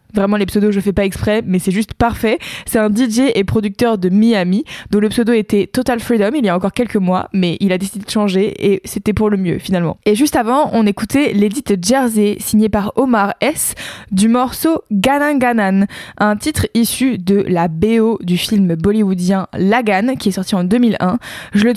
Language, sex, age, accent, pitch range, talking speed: French, female, 20-39, French, 200-240 Hz, 205 wpm